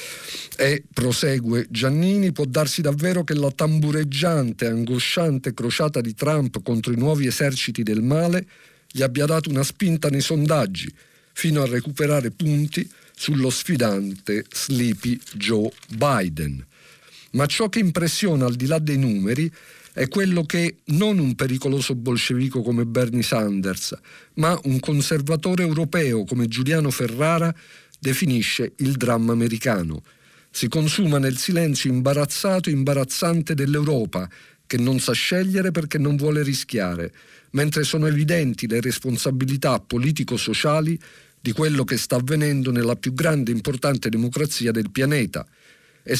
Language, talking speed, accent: Italian, 130 wpm, native